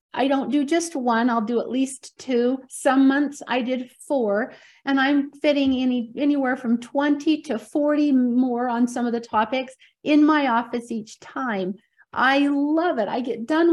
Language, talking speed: English, 180 wpm